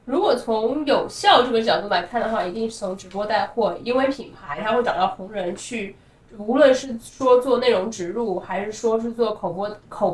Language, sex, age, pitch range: Chinese, female, 20-39, 205-250 Hz